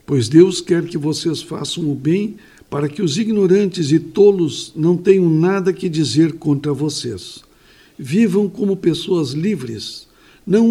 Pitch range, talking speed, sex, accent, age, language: 150-190 Hz, 145 wpm, male, Brazilian, 60-79, Portuguese